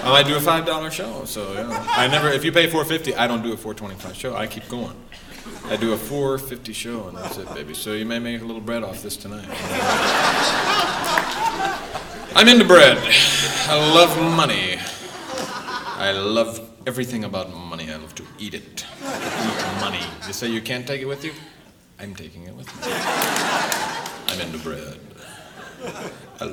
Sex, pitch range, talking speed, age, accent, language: male, 115-180 Hz, 180 wpm, 30-49, American, English